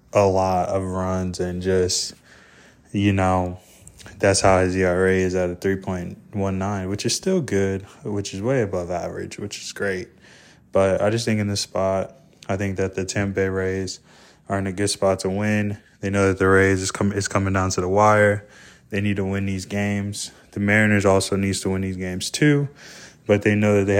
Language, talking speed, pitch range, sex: English, 205 wpm, 95-105 Hz, male